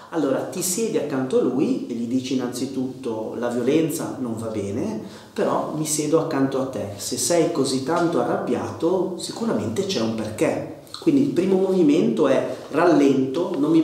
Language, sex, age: Italian, male, 30-49